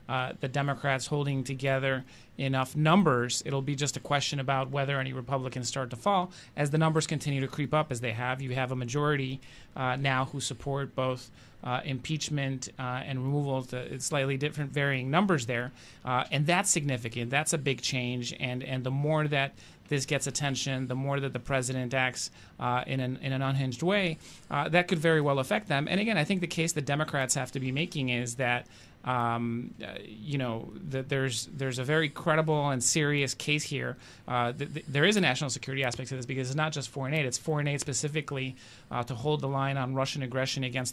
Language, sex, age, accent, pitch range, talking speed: English, male, 30-49, American, 130-145 Hz, 210 wpm